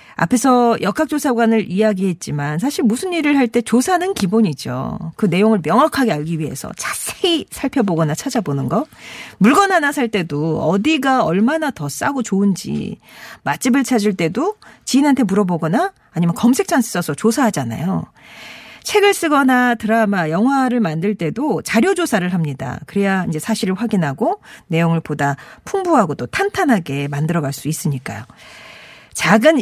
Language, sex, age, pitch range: Korean, female, 40-59, 180-275 Hz